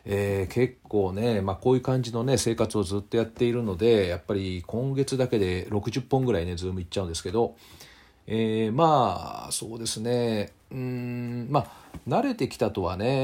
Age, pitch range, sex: 40-59, 90-130 Hz, male